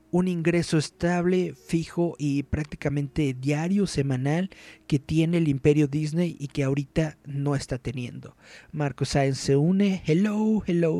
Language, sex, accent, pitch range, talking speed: Spanish, male, Mexican, 140-175 Hz, 135 wpm